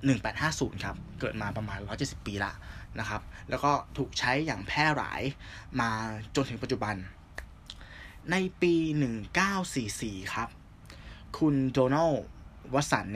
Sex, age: male, 20-39